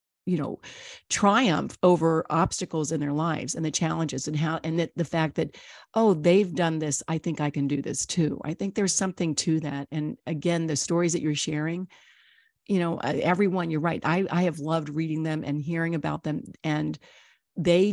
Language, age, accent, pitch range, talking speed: English, 50-69, American, 155-185 Hz, 200 wpm